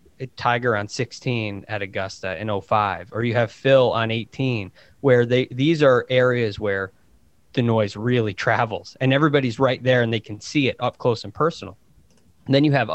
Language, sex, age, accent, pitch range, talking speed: English, male, 20-39, American, 105-135 Hz, 180 wpm